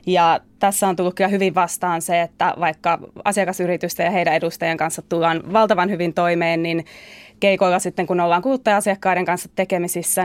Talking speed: 160 wpm